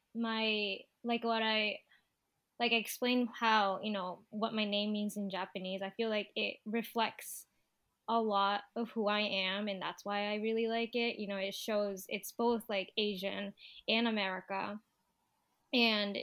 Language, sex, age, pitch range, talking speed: English, female, 10-29, 195-230 Hz, 165 wpm